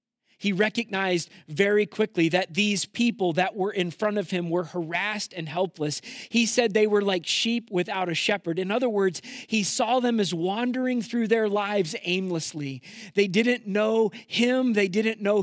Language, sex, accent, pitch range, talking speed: English, male, American, 170-210 Hz, 175 wpm